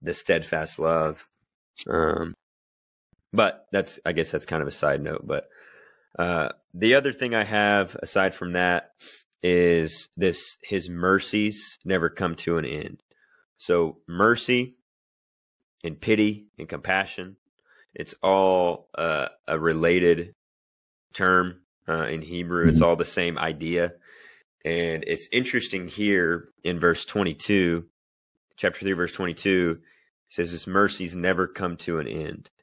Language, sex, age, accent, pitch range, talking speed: English, male, 30-49, American, 85-100 Hz, 130 wpm